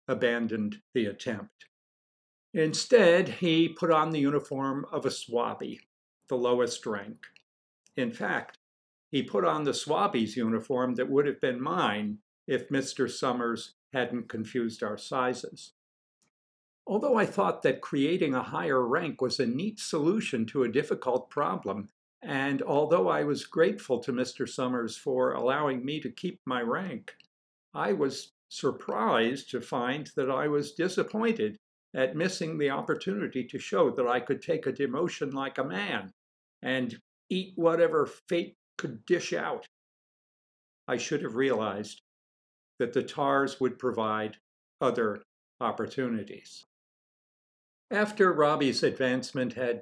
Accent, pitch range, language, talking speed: American, 120-155 Hz, English, 135 wpm